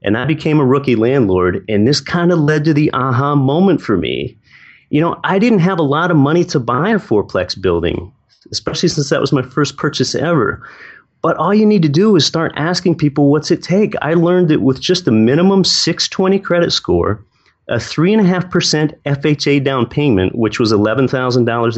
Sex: male